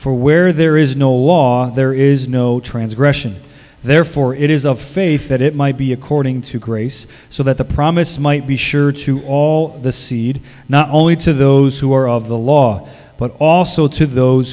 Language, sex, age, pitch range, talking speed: English, male, 30-49, 125-150 Hz, 190 wpm